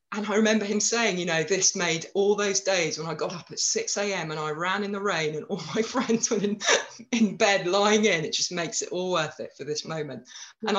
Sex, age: female, 40-59